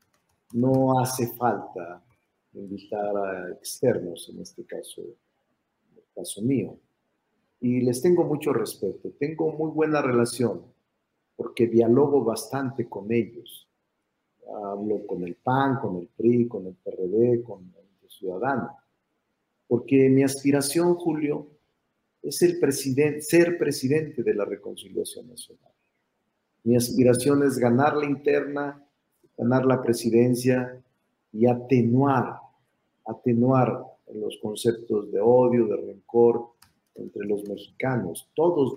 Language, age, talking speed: Spanish, 50-69, 115 wpm